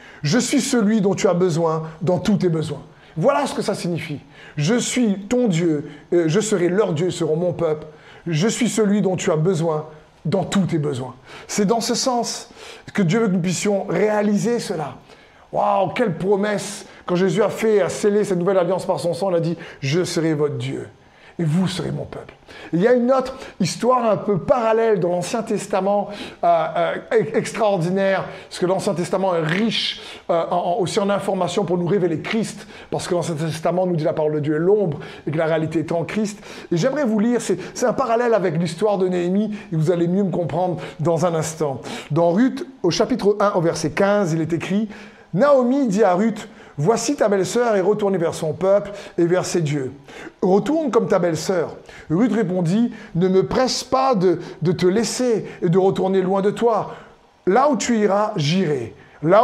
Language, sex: French, male